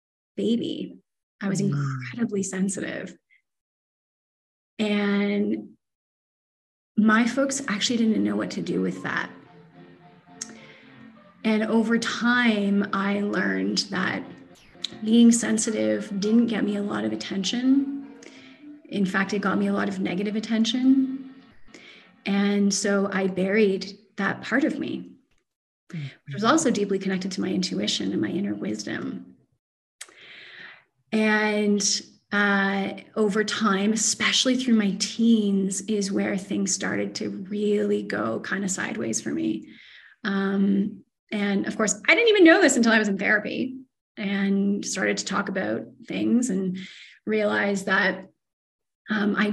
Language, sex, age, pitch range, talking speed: English, female, 30-49, 195-225 Hz, 130 wpm